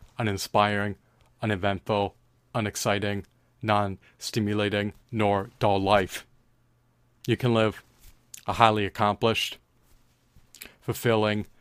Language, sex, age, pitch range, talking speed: English, male, 30-49, 105-120 Hz, 70 wpm